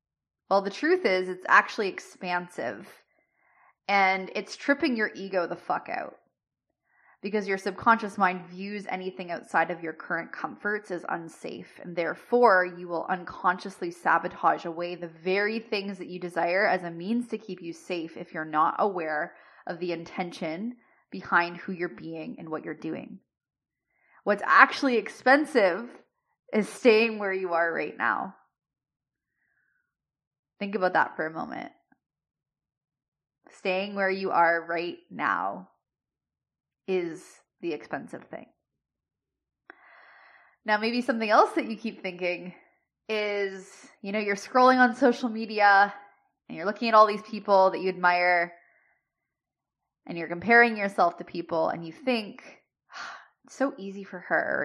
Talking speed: 145 wpm